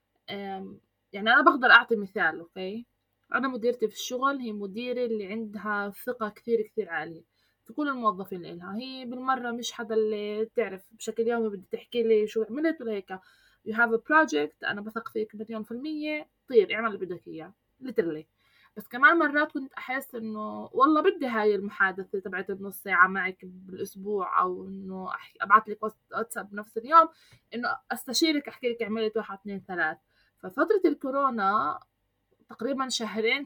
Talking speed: 160 wpm